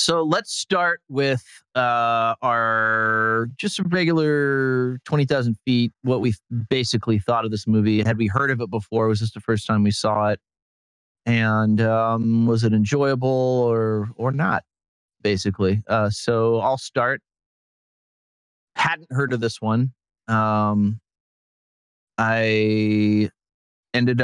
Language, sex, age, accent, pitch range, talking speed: English, male, 30-49, American, 105-125 Hz, 130 wpm